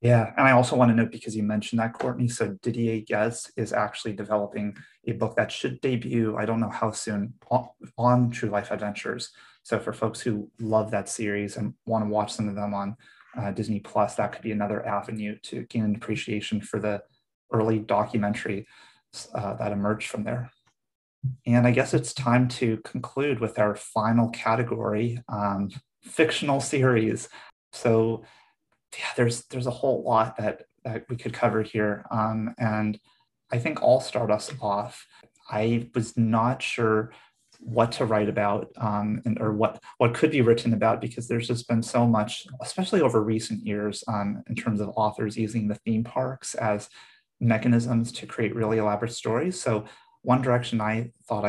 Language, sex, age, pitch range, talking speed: English, male, 30-49, 105-120 Hz, 175 wpm